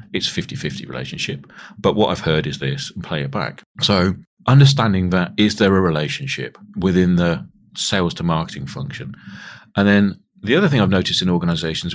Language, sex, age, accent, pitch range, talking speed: English, male, 40-59, British, 75-105 Hz, 175 wpm